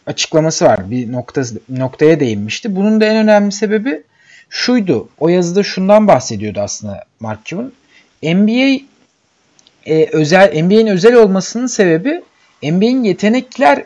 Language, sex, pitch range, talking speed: Turkish, male, 145-215 Hz, 115 wpm